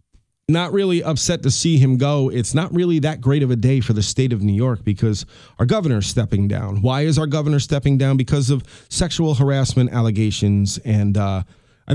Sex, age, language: male, 30-49, English